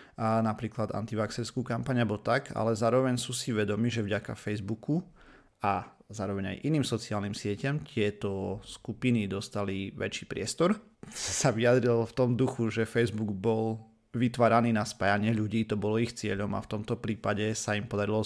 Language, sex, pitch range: Slovak, male, 105-120 Hz